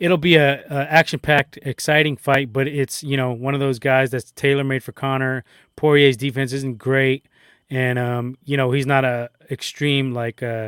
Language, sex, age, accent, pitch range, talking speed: English, male, 20-39, American, 120-145 Hz, 180 wpm